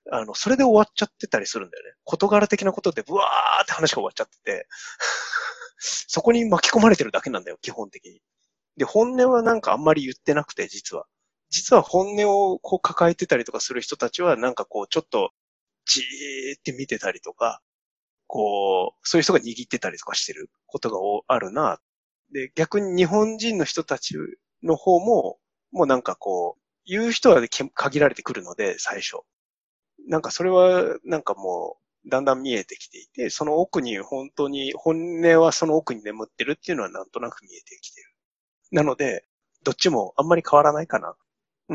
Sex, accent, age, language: male, native, 20-39, Japanese